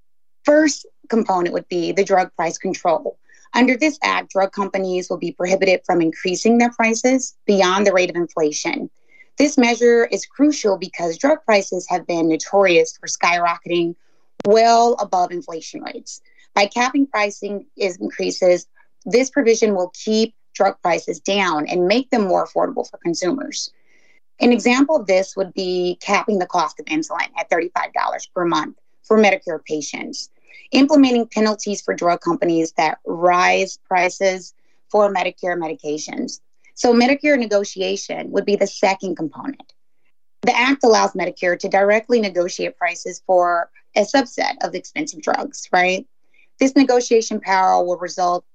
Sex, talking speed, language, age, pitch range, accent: female, 145 wpm, English, 30-49, 180-240 Hz, American